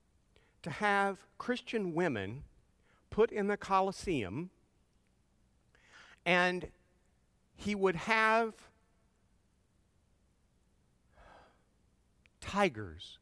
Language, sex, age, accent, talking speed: English, male, 50-69, American, 60 wpm